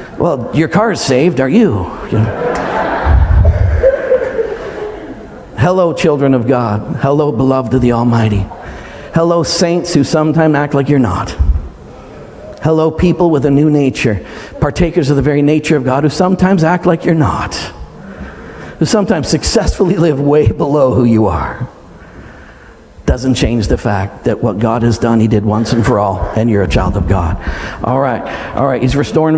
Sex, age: male, 50-69